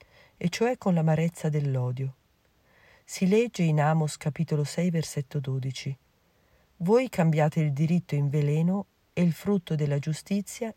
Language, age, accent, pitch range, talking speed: Italian, 50-69, native, 145-195 Hz, 135 wpm